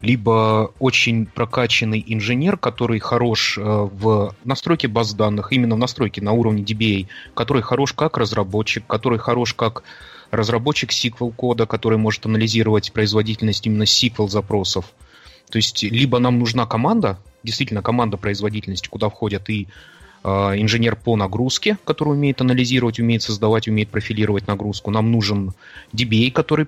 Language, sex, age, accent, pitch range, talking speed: Russian, male, 30-49, native, 105-120 Hz, 130 wpm